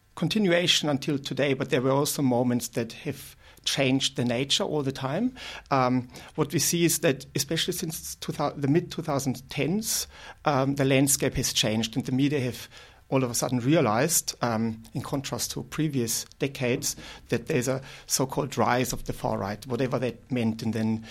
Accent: German